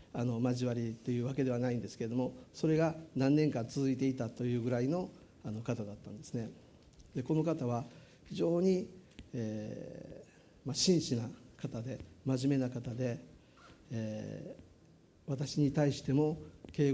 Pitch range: 125-160 Hz